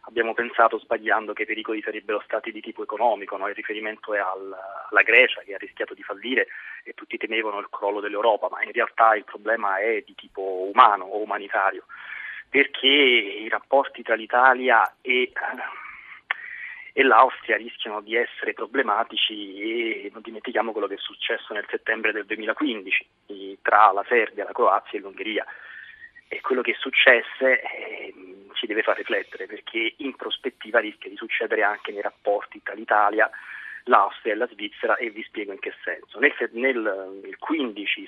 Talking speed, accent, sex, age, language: 160 wpm, native, male, 30-49, Italian